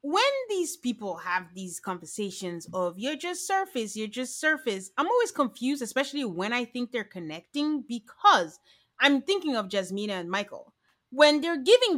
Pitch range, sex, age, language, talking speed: 235-350 Hz, female, 30-49, English, 160 wpm